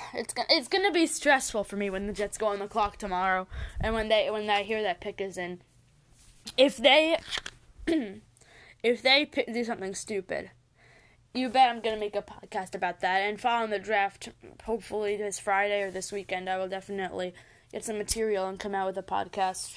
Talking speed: 200 wpm